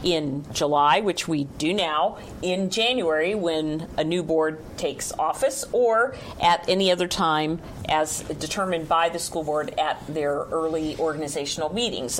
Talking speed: 150 wpm